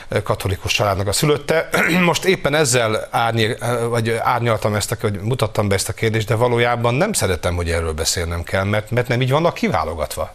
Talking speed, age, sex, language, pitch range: 190 wpm, 40-59, male, Hungarian, 95-125 Hz